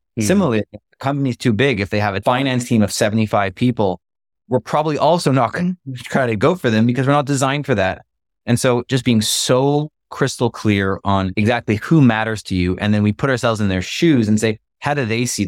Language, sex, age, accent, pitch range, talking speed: English, male, 20-39, American, 100-130 Hz, 220 wpm